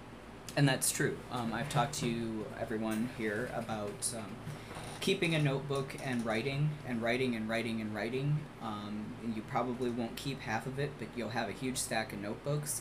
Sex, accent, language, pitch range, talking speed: male, American, English, 115-130 Hz, 185 wpm